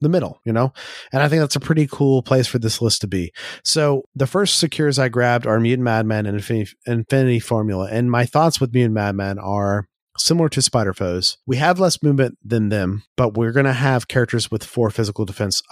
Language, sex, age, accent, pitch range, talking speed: English, male, 30-49, American, 110-135 Hz, 220 wpm